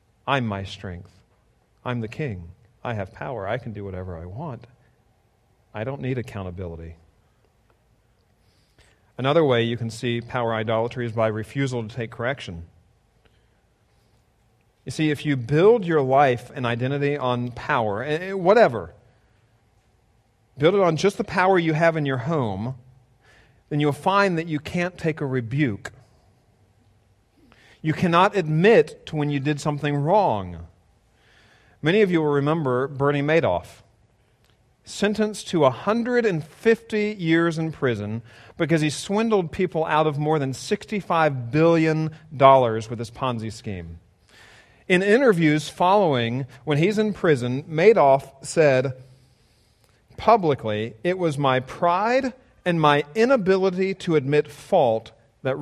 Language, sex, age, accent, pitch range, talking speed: English, male, 40-59, American, 110-160 Hz, 130 wpm